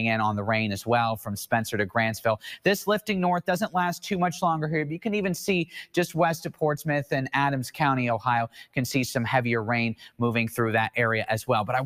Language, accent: English, American